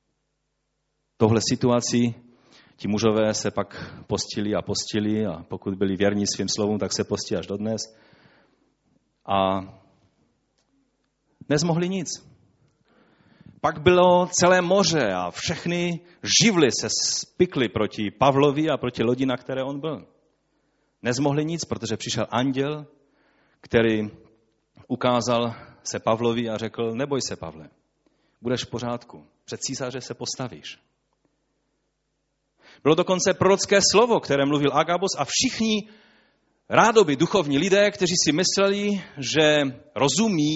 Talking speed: 115 wpm